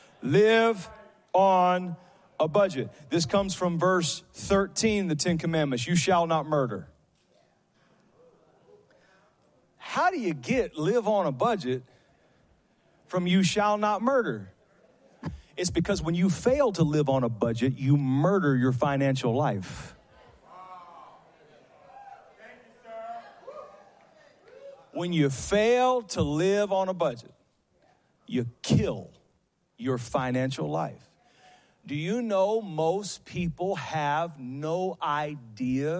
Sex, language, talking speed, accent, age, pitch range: male, English, 110 wpm, American, 40-59, 145-210 Hz